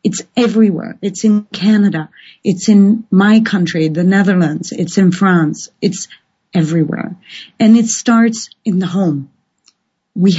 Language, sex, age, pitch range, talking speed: English, female, 40-59, 180-225 Hz, 135 wpm